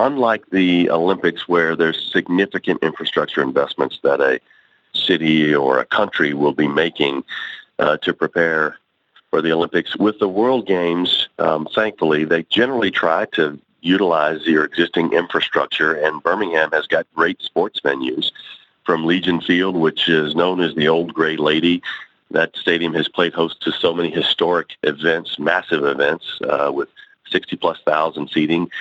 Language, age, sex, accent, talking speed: English, 40-59, male, American, 150 wpm